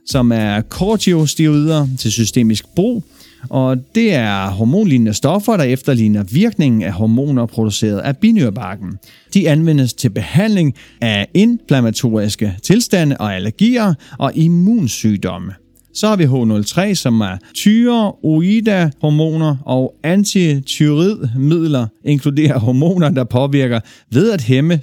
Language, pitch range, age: Danish, 110-175 Hz, 40-59